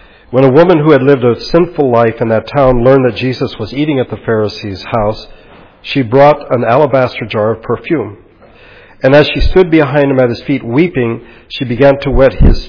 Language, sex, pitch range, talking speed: English, male, 115-145 Hz, 205 wpm